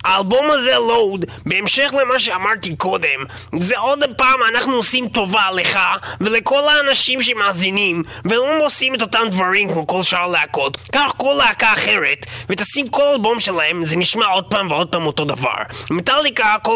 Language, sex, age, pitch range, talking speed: Hebrew, male, 30-49, 190-255 Hz, 160 wpm